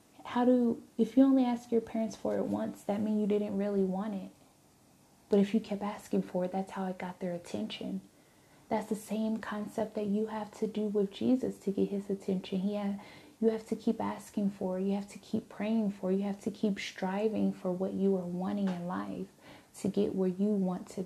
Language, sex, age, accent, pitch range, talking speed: English, female, 20-39, American, 195-225 Hz, 230 wpm